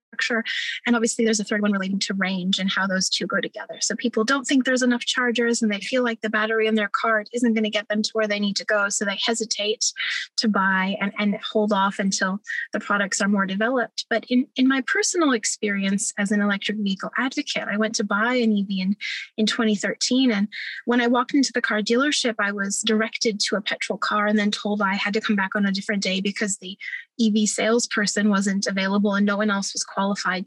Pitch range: 200-235 Hz